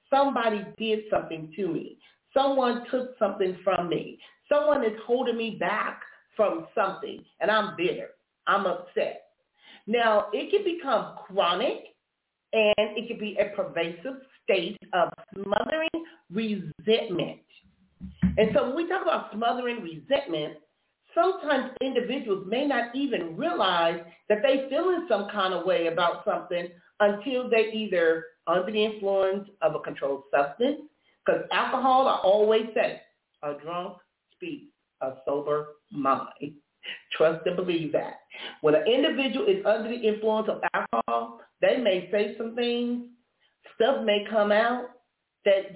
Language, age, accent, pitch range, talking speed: English, 40-59, American, 185-260 Hz, 140 wpm